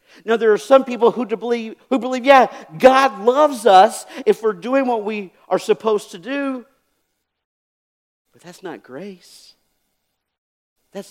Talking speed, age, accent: 145 wpm, 50-69, American